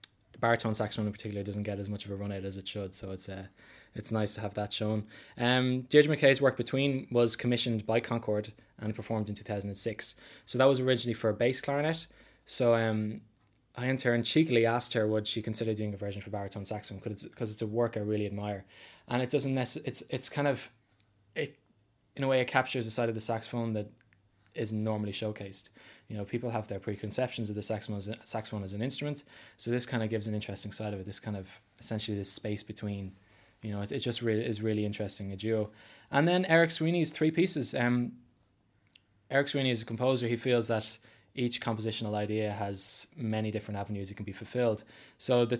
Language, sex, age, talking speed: English, male, 20-39, 220 wpm